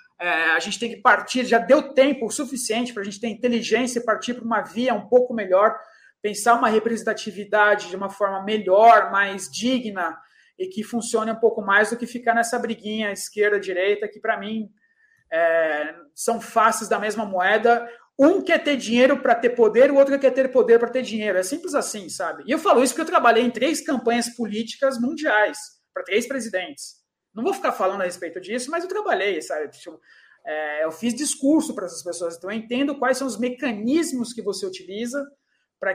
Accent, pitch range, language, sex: Brazilian, 205-255 Hz, Portuguese, male